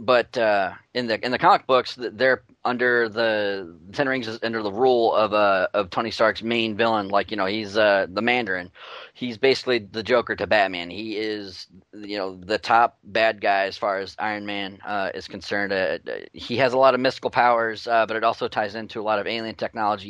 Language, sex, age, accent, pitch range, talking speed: English, male, 30-49, American, 100-120 Hz, 220 wpm